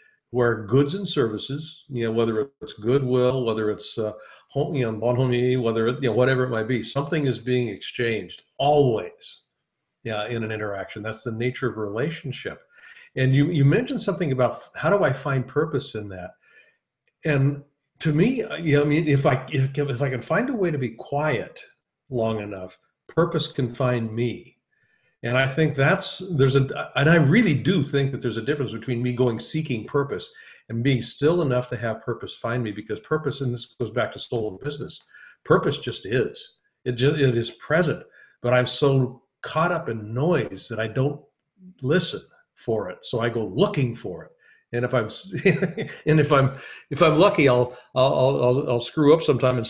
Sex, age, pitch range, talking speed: male, 50-69, 120-150 Hz, 190 wpm